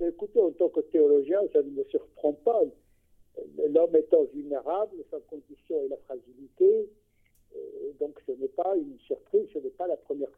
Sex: male